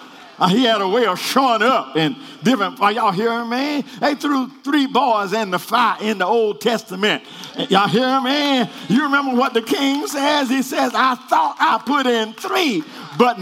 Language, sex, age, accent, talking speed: English, male, 50-69, American, 190 wpm